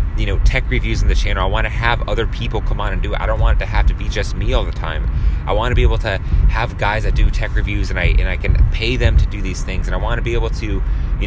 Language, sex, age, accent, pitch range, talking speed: English, male, 30-49, American, 85-105 Hz, 330 wpm